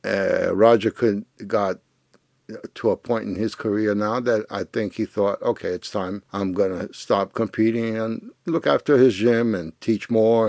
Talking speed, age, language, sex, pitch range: 175 wpm, 60-79, English, male, 100-115 Hz